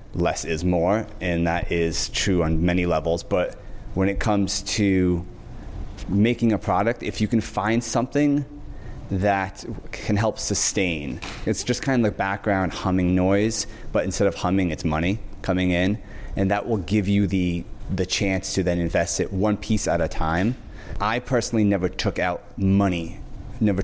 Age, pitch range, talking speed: 30-49, 90-105 Hz, 170 wpm